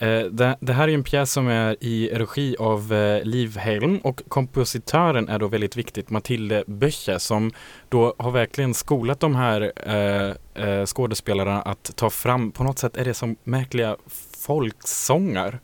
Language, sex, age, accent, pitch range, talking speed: Swedish, male, 20-39, Norwegian, 110-135 Hz, 175 wpm